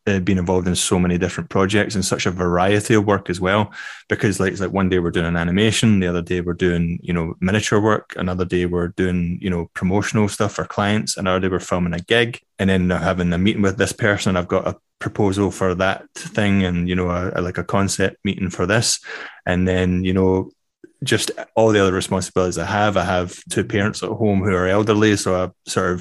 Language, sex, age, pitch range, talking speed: English, male, 20-39, 90-105 Hz, 230 wpm